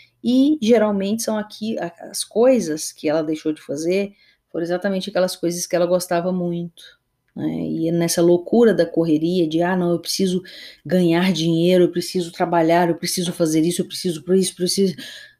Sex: female